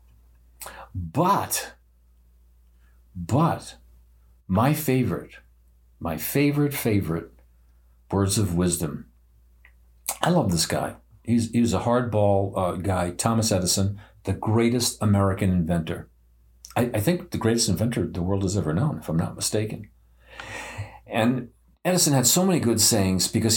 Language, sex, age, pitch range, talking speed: English, male, 50-69, 80-110 Hz, 125 wpm